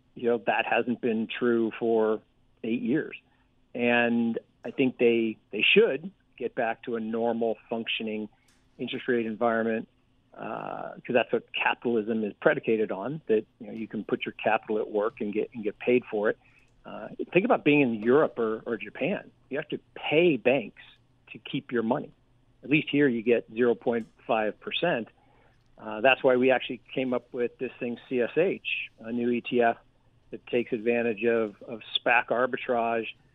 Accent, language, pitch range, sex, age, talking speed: American, English, 115-125 Hz, male, 40-59, 170 wpm